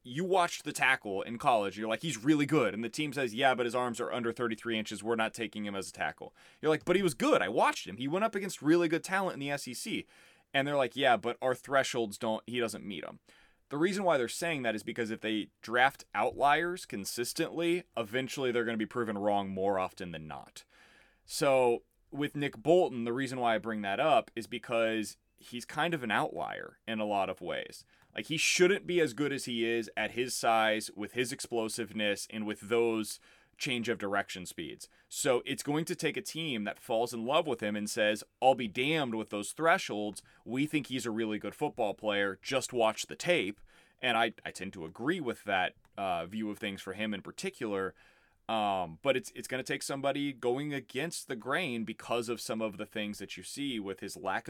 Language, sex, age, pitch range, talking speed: English, male, 20-39, 110-140 Hz, 225 wpm